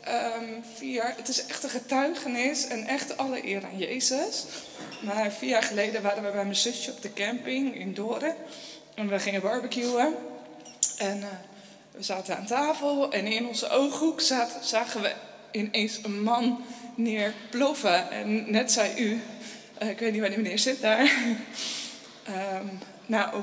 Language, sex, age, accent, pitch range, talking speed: Dutch, female, 20-39, Dutch, 210-255 Hz, 160 wpm